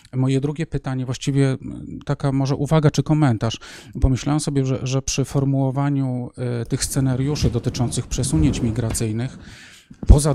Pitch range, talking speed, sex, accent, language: 120-140 Hz, 120 wpm, male, native, Polish